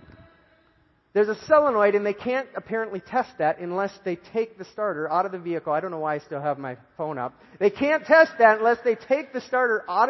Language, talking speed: English, 225 wpm